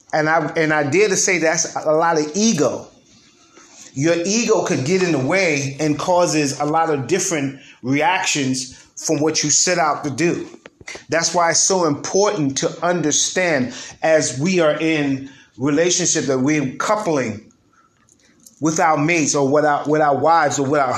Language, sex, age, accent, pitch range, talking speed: English, male, 30-49, American, 145-185 Hz, 170 wpm